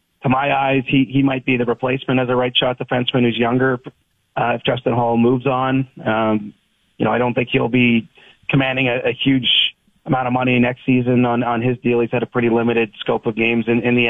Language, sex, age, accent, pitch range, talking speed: English, male, 30-49, American, 115-130 Hz, 230 wpm